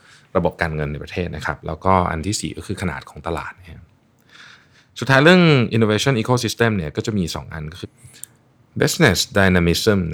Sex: male